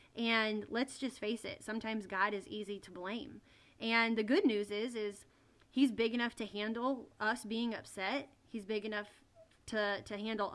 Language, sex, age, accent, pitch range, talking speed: English, female, 20-39, American, 205-250 Hz, 175 wpm